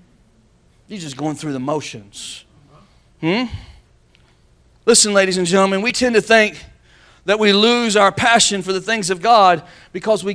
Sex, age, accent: male, 40-59, American